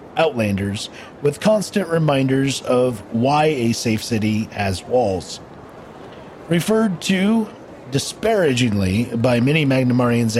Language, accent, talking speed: English, American, 100 wpm